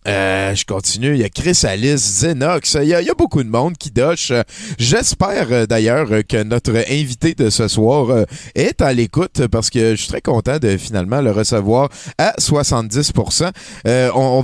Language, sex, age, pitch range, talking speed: French, male, 30-49, 110-145 Hz, 185 wpm